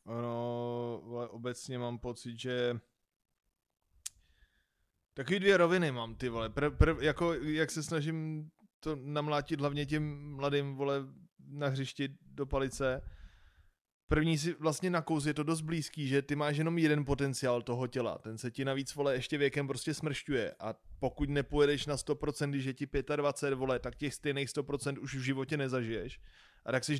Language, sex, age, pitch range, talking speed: Czech, male, 20-39, 135-150 Hz, 165 wpm